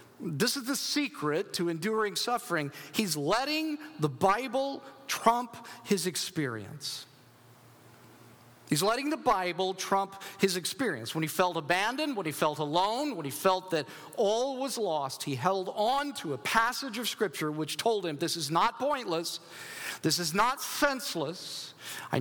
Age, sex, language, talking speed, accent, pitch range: 50-69, male, English, 150 wpm, American, 170-245 Hz